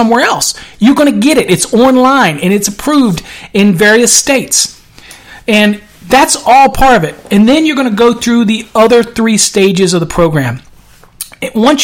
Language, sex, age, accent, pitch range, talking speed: English, male, 40-59, American, 185-225 Hz, 185 wpm